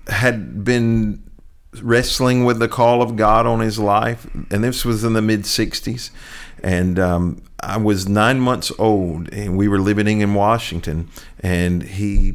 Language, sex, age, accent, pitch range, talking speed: English, male, 50-69, American, 95-115 Hz, 155 wpm